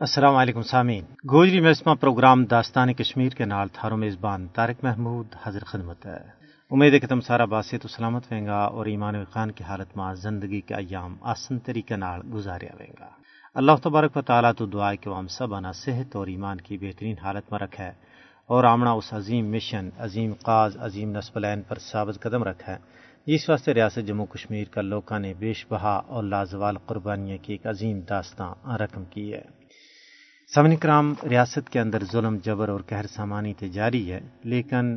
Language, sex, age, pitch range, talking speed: Urdu, male, 40-59, 105-130 Hz, 180 wpm